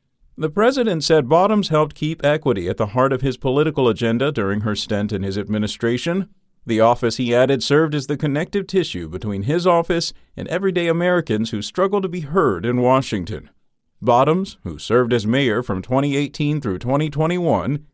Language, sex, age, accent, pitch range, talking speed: English, male, 50-69, American, 120-175 Hz, 170 wpm